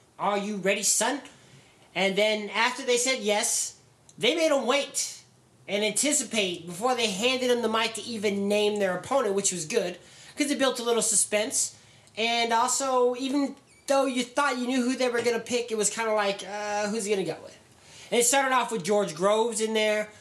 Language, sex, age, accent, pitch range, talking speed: English, male, 30-49, American, 190-245 Hz, 210 wpm